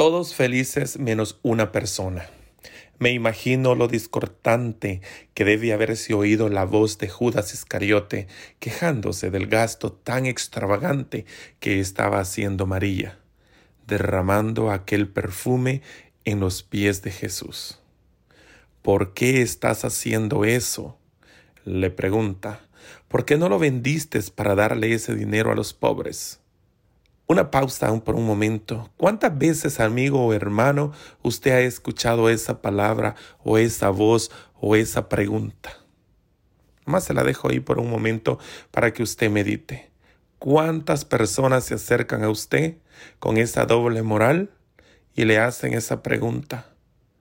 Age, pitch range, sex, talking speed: 40-59, 105-120 Hz, male, 130 wpm